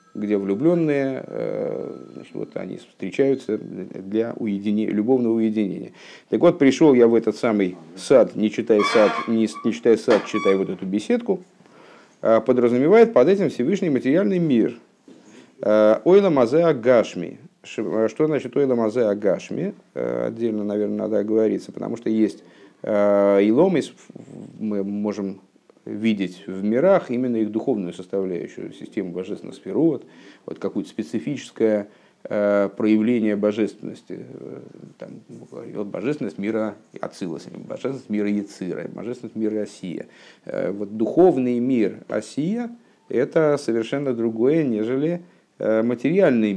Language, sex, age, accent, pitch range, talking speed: Russian, male, 50-69, native, 105-130 Hz, 115 wpm